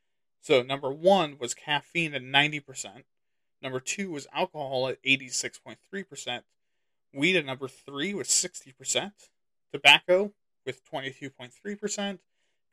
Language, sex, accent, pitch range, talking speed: English, male, American, 130-180 Hz, 105 wpm